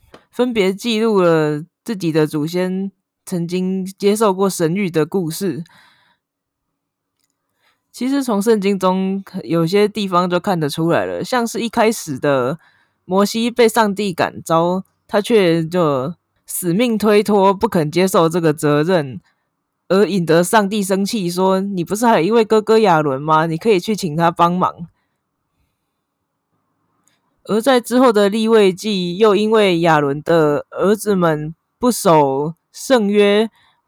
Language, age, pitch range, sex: Chinese, 20-39, 165-210 Hz, female